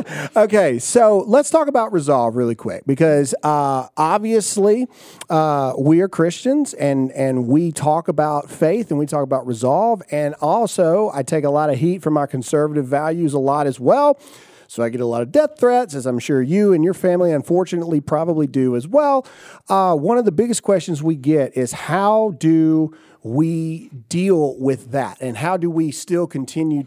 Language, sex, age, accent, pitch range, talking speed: English, male, 40-59, American, 140-190 Hz, 185 wpm